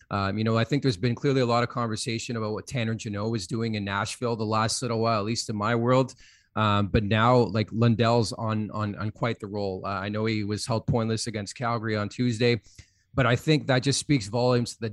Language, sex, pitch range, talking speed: English, male, 110-125 Hz, 240 wpm